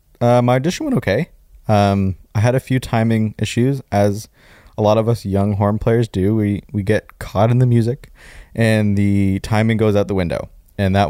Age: 20-39